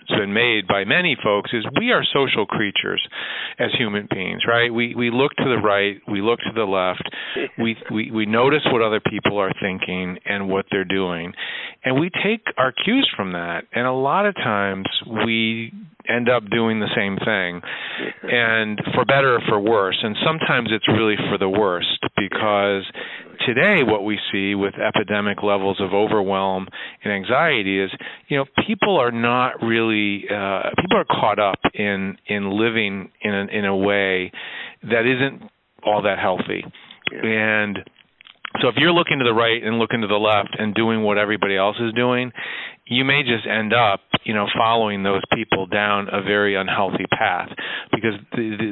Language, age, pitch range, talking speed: English, 40-59, 100-120 Hz, 180 wpm